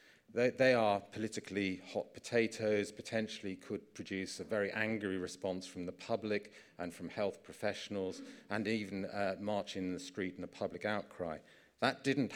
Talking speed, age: 160 wpm, 40-59